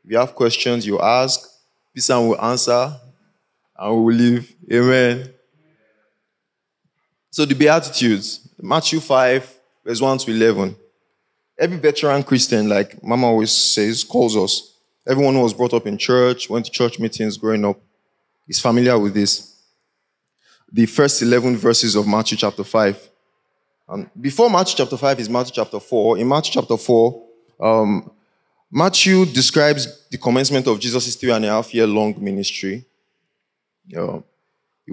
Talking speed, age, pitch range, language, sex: 145 wpm, 20-39, 115-145 Hz, English, male